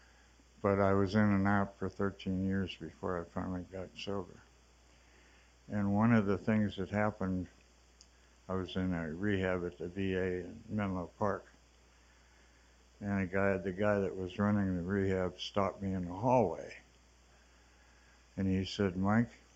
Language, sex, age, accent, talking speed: English, male, 60-79, American, 155 wpm